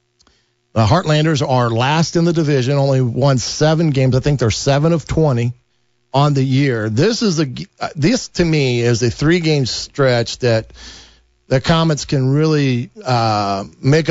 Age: 50-69